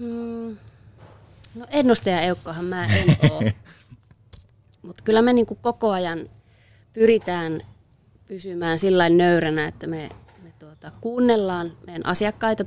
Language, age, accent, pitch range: Finnish, 20-39, native, 140-185 Hz